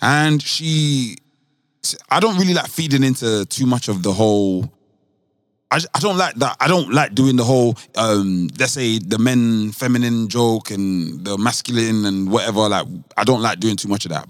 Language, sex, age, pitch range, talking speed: English, male, 20-39, 95-140 Hz, 195 wpm